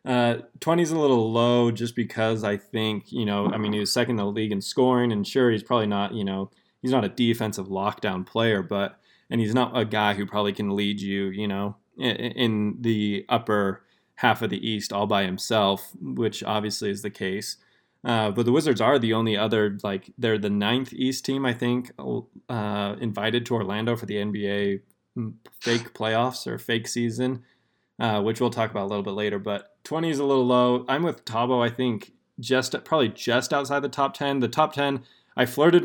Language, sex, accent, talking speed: English, male, American, 210 wpm